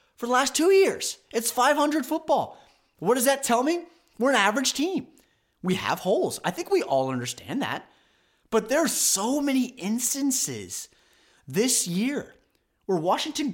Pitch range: 175-285 Hz